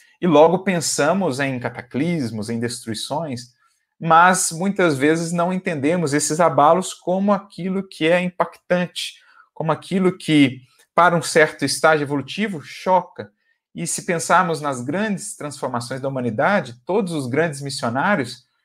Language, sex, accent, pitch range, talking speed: Portuguese, male, Brazilian, 125-170 Hz, 130 wpm